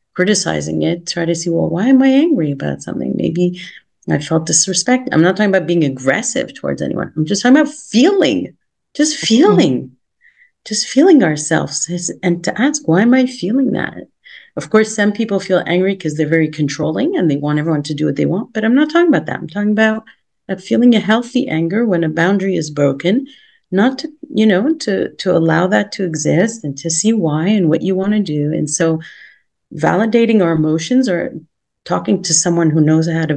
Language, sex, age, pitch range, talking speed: English, female, 40-59, 160-215 Hz, 200 wpm